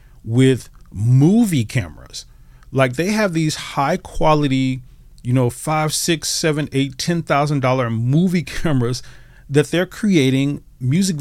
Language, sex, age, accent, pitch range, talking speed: English, male, 40-59, American, 125-155 Hz, 130 wpm